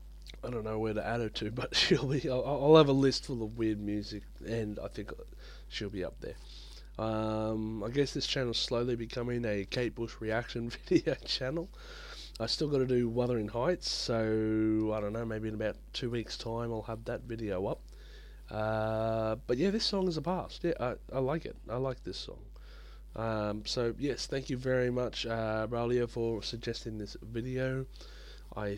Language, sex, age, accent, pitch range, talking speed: English, male, 20-39, Australian, 105-125 Hz, 195 wpm